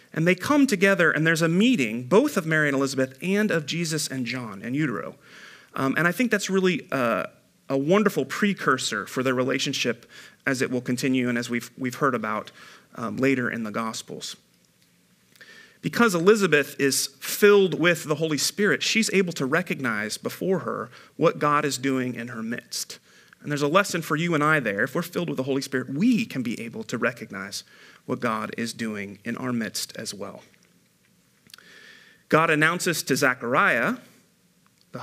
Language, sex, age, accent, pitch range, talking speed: English, male, 40-59, American, 125-185 Hz, 180 wpm